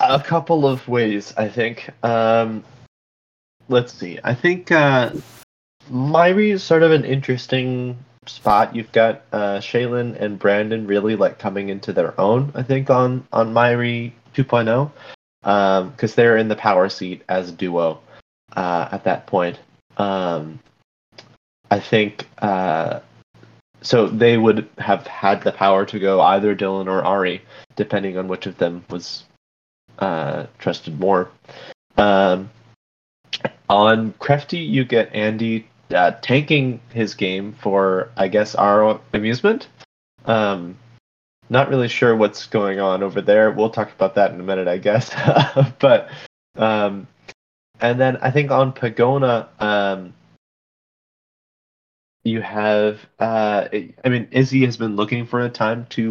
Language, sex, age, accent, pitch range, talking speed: English, male, 20-39, American, 100-125 Hz, 140 wpm